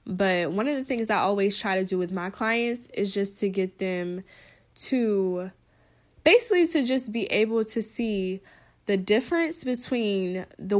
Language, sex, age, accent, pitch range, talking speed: English, female, 20-39, American, 185-220 Hz, 165 wpm